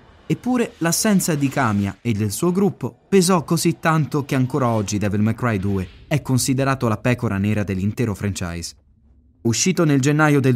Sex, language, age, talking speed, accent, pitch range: male, Italian, 20-39, 165 wpm, native, 105-155 Hz